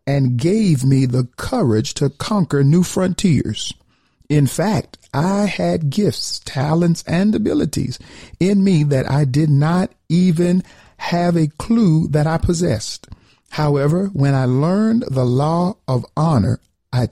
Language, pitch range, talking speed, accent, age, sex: English, 125-160 Hz, 135 wpm, American, 50-69, male